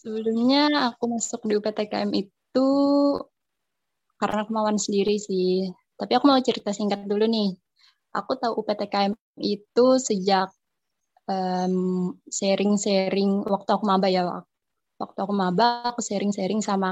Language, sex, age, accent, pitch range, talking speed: Indonesian, female, 20-39, native, 190-230 Hz, 115 wpm